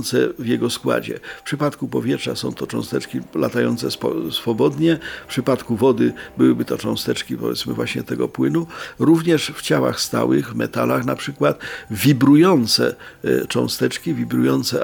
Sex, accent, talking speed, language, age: male, native, 125 wpm, Polish, 50-69